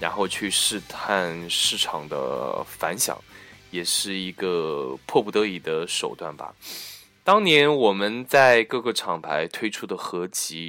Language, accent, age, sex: Chinese, native, 20-39, male